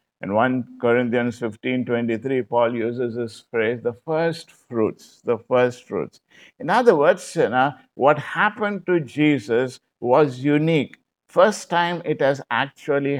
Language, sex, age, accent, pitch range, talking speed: English, male, 50-69, Indian, 115-160 Hz, 140 wpm